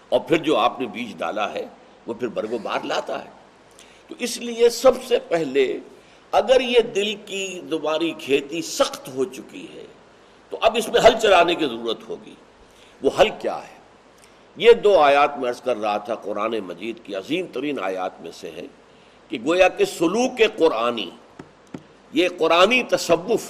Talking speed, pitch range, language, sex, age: 175 wpm, 145-235 Hz, Urdu, male, 60-79